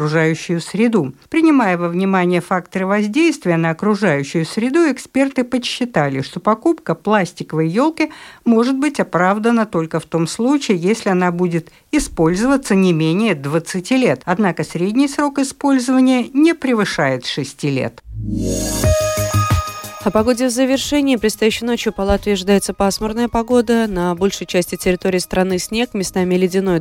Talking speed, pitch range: 130 wpm, 160-215 Hz